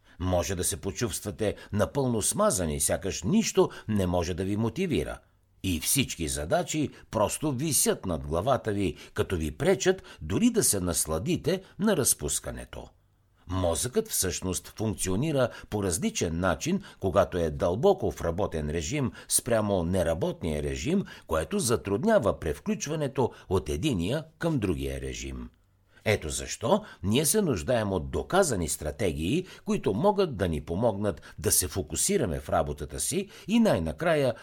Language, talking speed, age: Bulgarian, 130 wpm, 60-79